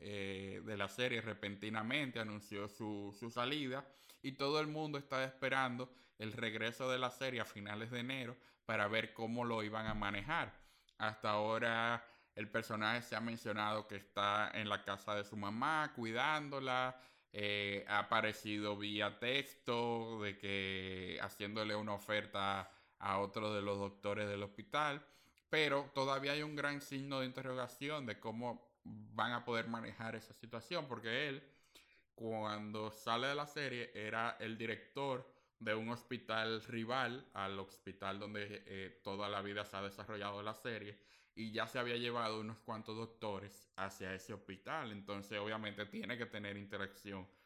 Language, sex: Spanish, male